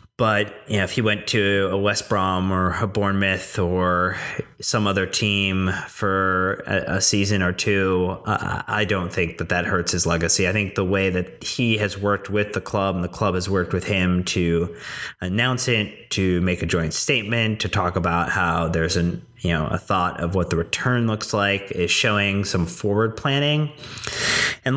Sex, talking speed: male, 190 wpm